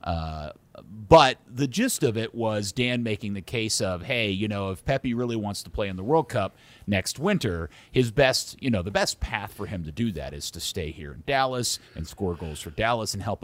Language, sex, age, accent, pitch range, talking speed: English, male, 40-59, American, 100-135 Hz, 230 wpm